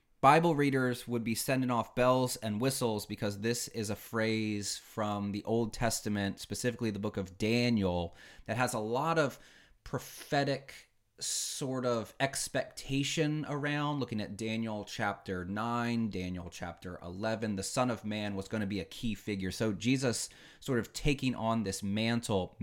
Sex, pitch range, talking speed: male, 100-130 Hz, 160 wpm